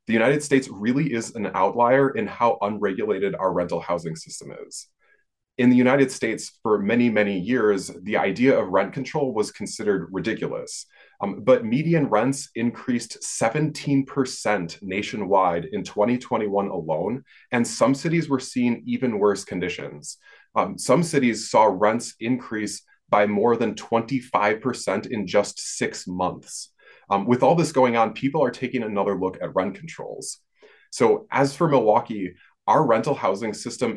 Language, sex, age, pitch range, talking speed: English, male, 20-39, 105-135 Hz, 150 wpm